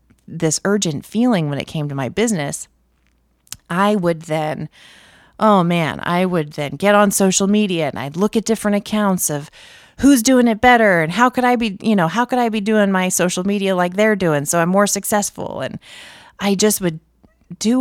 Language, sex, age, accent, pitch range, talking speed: English, female, 30-49, American, 160-215 Hz, 200 wpm